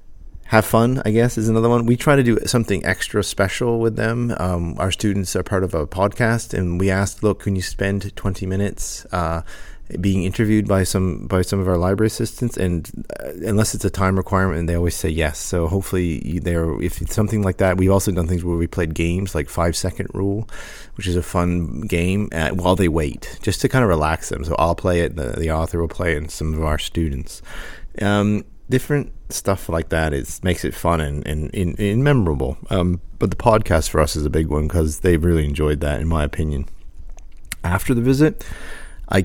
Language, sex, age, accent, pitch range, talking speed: English, male, 30-49, American, 85-100 Hz, 210 wpm